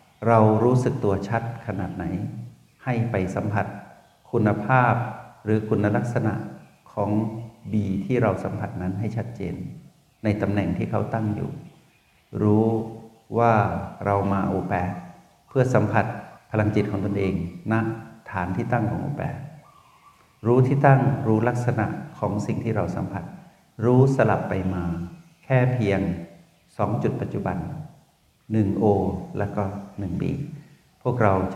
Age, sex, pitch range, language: 60-79, male, 100-130 Hz, Thai